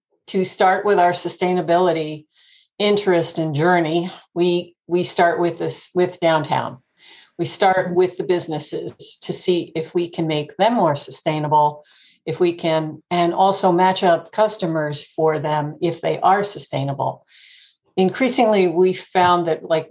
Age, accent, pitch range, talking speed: 50-69, American, 160-205 Hz, 145 wpm